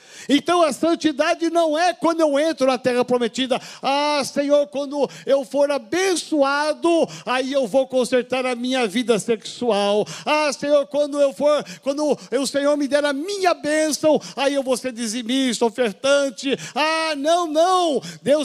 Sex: male